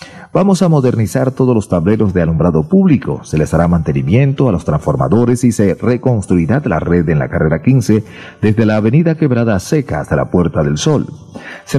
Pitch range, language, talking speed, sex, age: 85-130 Hz, Spanish, 185 wpm, male, 40-59